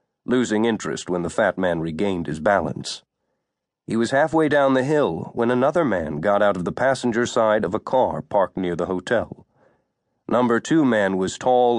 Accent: American